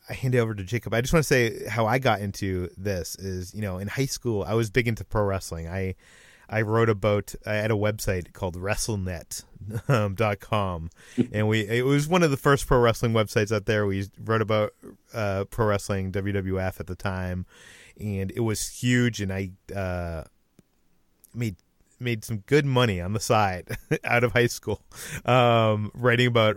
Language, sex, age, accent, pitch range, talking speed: English, male, 30-49, American, 100-120 Hz, 190 wpm